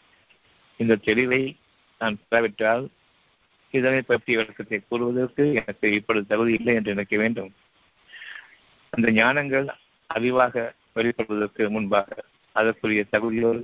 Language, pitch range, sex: Tamil, 110-140 Hz, male